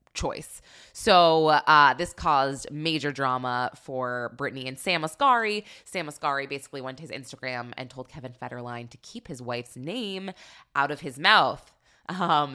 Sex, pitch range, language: female, 130-180 Hz, English